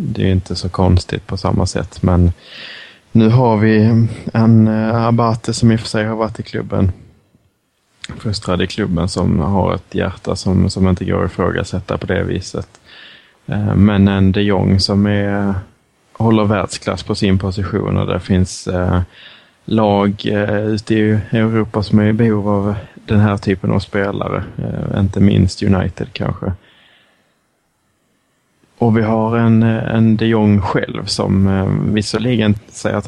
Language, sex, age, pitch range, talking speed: Swedish, male, 20-39, 95-110 Hz, 150 wpm